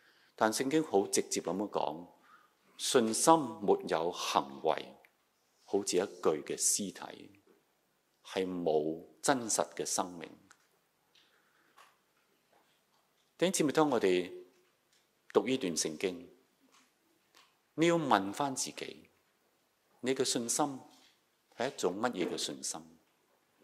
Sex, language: male, Chinese